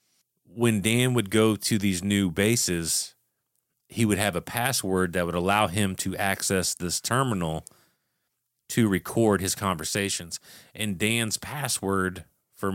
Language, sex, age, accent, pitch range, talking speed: English, male, 30-49, American, 90-115 Hz, 135 wpm